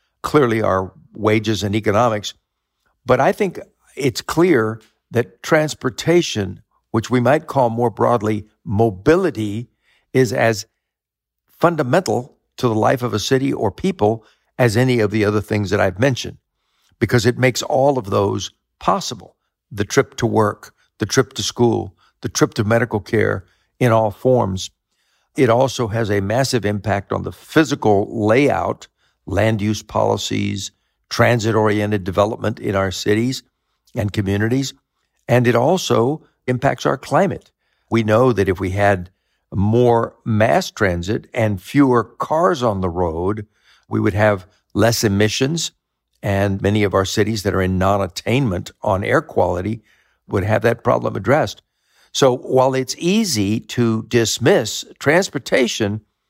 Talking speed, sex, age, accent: 140 wpm, male, 60-79, American